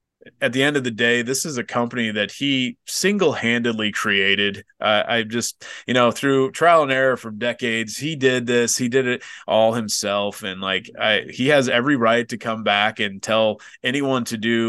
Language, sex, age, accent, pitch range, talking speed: English, male, 30-49, American, 110-130 Hz, 195 wpm